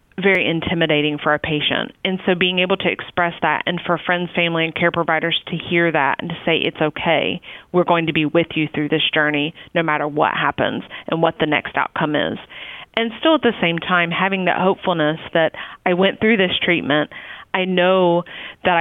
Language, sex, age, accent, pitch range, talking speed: English, female, 30-49, American, 165-190 Hz, 205 wpm